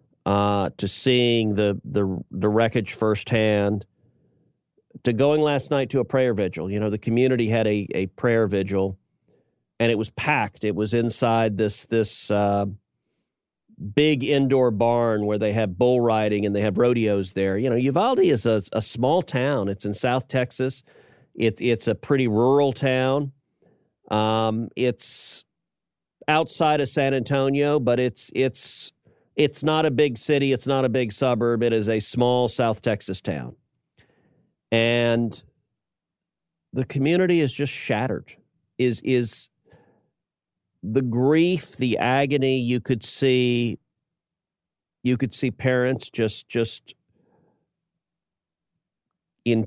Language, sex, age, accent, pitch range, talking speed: English, male, 40-59, American, 110-130 Hz, 140 wpm